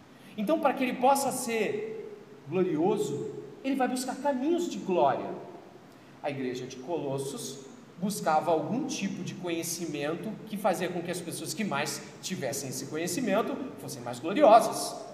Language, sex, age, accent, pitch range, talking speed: Portuguese, male, 40-59, Brazilian, 190-255 Hz, 145 wpm